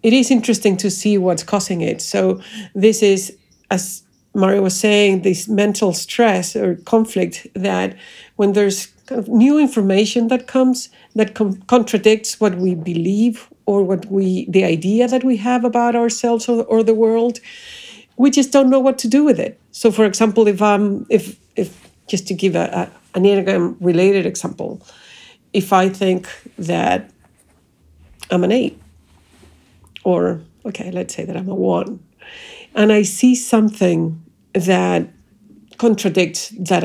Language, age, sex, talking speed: English, 50-69, female, 155 wpm